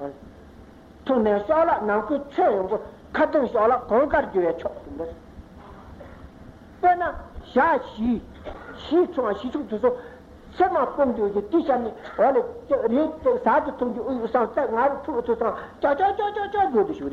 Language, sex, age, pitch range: Italian, male, 60-79, 205-310 Hz